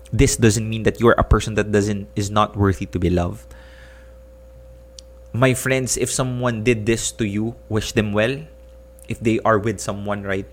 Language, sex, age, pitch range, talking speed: English, male, 20-39, 75-120 Hz, 180 wpm